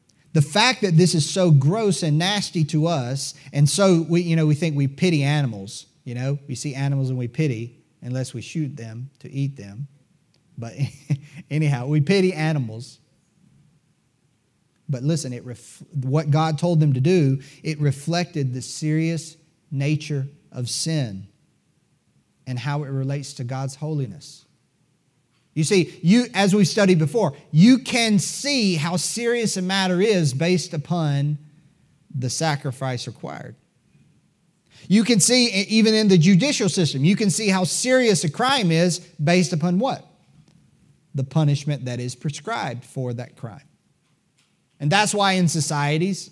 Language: English